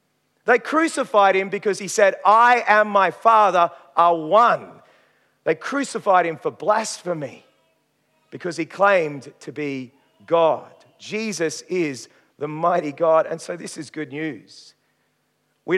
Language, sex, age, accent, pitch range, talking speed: English, male, 40-59, Australian, 150-185 Hz, 135 wpm